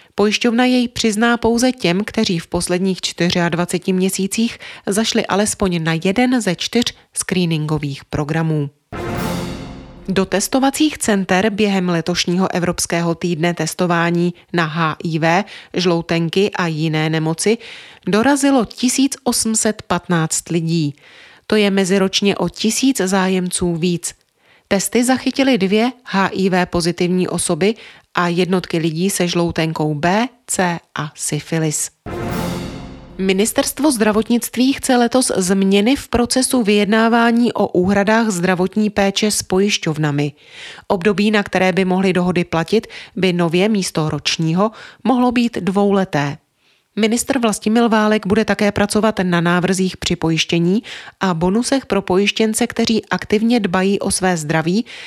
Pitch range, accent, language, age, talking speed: 170-220 Hz, native, Czech, 30-49, 115 wpm